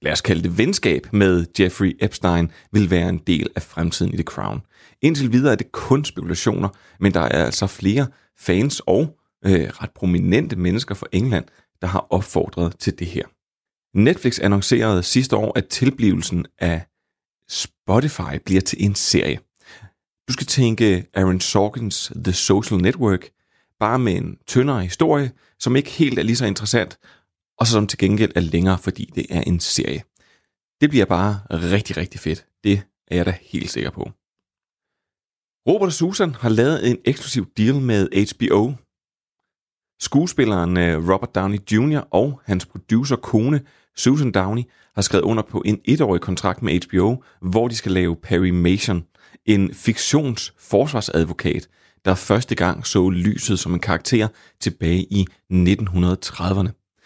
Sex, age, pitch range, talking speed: male, 30-49, 90-120 Hz, 155 wpm